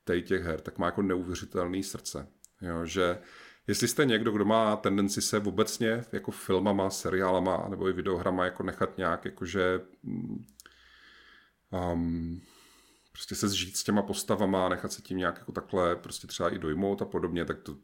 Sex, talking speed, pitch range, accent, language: male, 165 wpm, 90-100 Hz, native, Czech